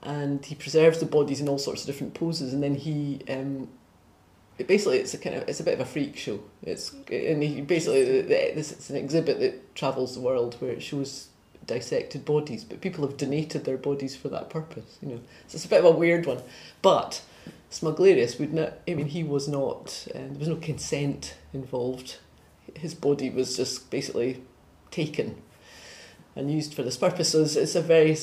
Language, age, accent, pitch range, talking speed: English, 30-49, British, 135-160 Hz, 205 wpm